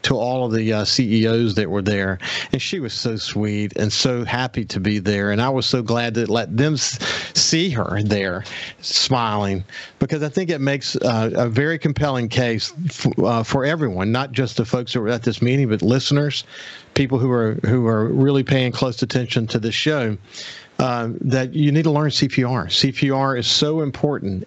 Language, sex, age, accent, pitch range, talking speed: English, male, 50-69, American, 110-135 Hz, 190 wpm